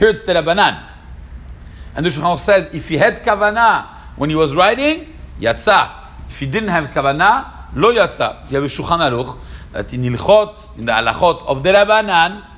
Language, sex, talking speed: English, male, 170 wpm